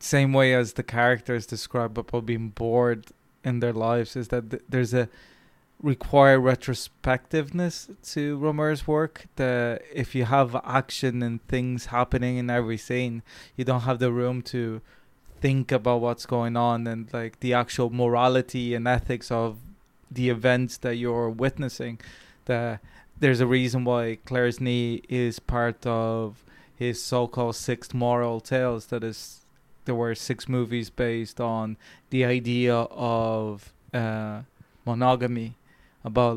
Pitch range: 115-125 Hz